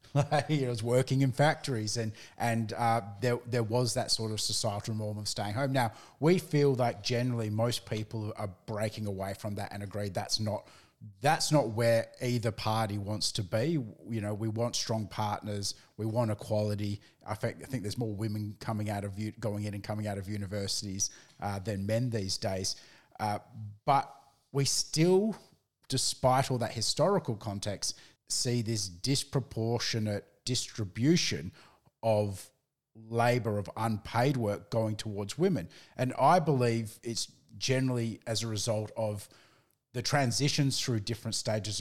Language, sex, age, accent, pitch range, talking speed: English, male, 30-49, Australian, 105-125 Hz, 155 wpm